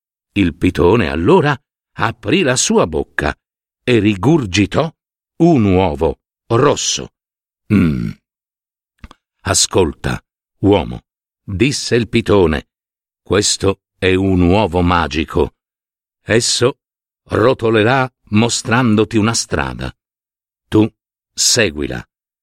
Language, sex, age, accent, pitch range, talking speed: Italian, male, 60-79, native, 90-115 Hz, 80 wpm